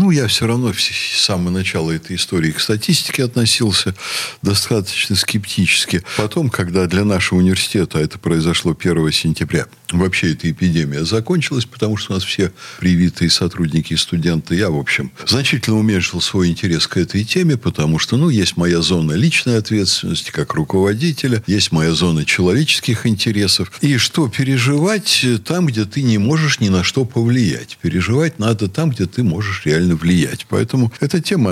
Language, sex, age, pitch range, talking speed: Russian, male, 60-79, 85-125 Hz, 160 wpm